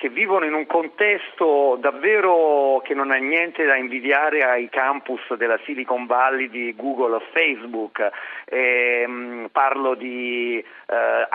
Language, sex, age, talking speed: Italian, male, 40-59, 130 wpm